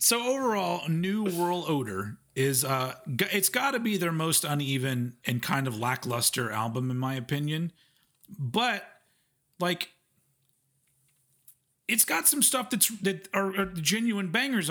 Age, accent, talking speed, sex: 40-59, American, 140 wpm, male